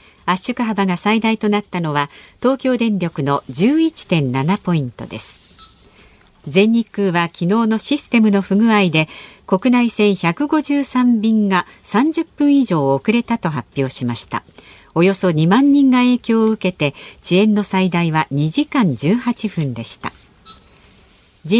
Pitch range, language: 165-245 Hz, Japanese